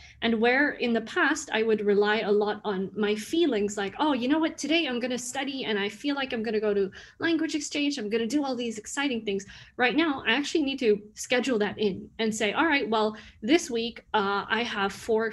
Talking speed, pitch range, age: 245 wpm, 205-245 Hz, 20-39